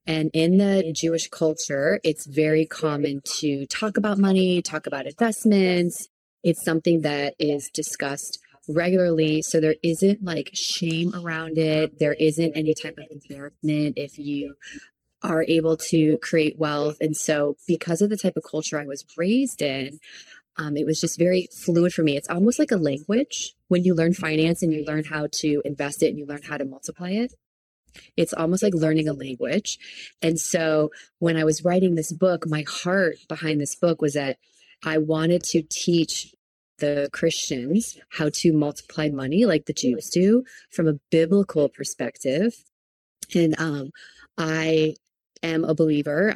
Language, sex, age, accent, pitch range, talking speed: English, female, 20-39, American, 150-175 Hz, 165 wpm